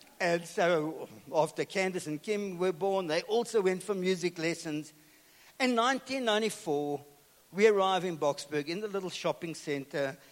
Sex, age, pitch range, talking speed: male, 60-79, 165-220 Hz, 145 wpm